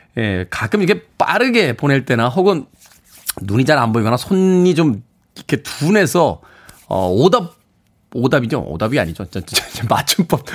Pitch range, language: 120-175 Hz, Korean